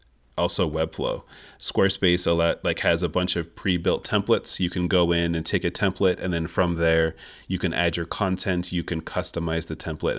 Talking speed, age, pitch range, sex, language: 200 wpm, 30-49, 80-90 Hz, male, English